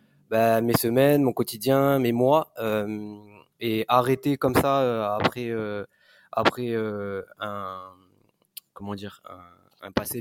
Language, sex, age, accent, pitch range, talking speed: French, male, 20-39, French, 105-130 Hz, 135 wpm